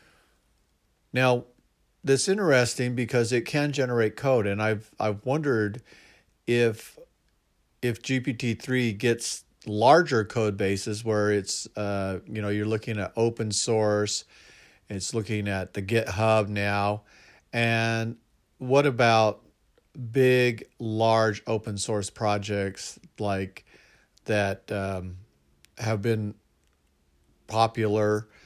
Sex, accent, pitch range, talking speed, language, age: male, American, 100-115 Hz, 105 wpm, English, 50-69